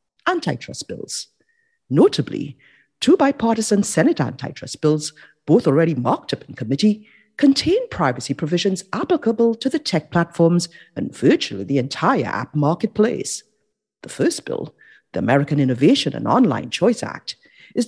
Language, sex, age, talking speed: English, female, 50-69, 130 wpm